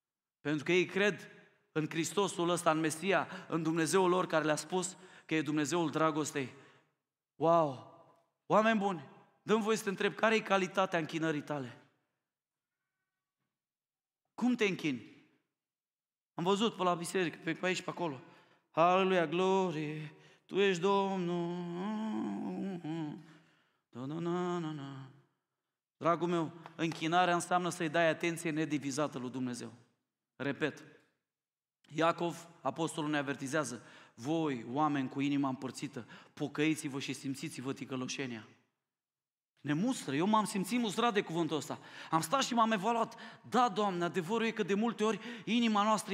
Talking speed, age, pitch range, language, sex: 125 wpm, 30-49, 155-200 Hz, Romanian, male